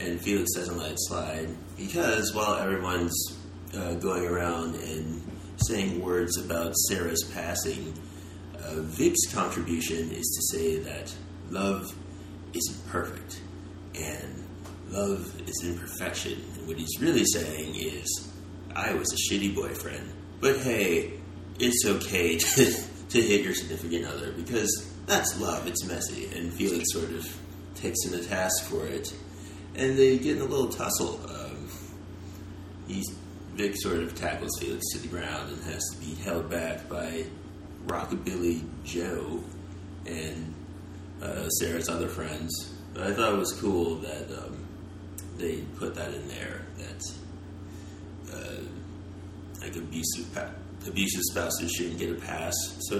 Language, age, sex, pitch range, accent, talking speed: English, 30-49, male, 85-100 Hz, American, 140 wpm